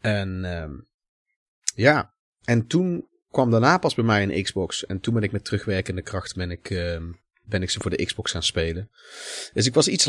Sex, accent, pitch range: male, Dutch, 95-125 Hz